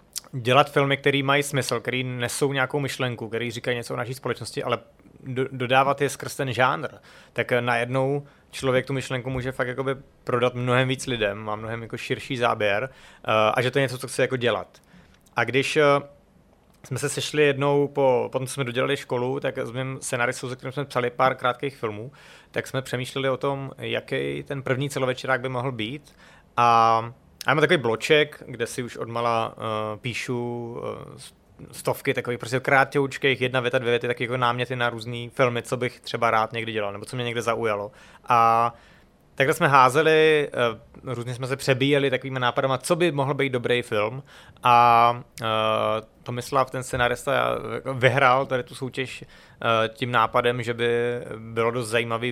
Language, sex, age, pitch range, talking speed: Czech, male, 30-49, 120-135 Hz, 180 wpm